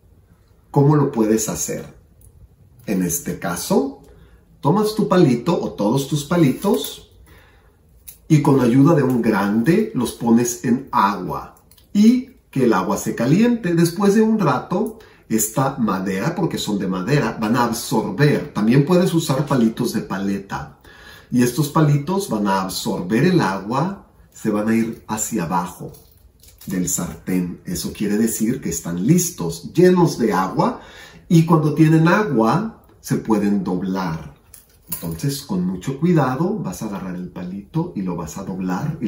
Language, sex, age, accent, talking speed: English, male, 40-59, Mexican, 145 wpm